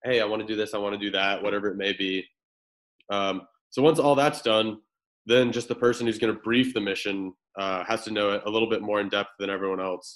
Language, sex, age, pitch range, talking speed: English, male, 20-39, 100-115 Hz, 265 wpm